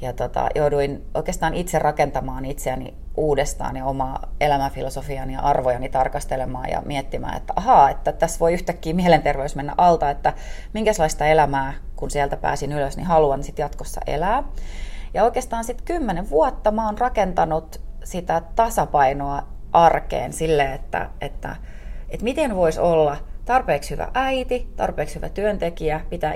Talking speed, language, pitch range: 140 wpm, Finnish, 135-185 Hz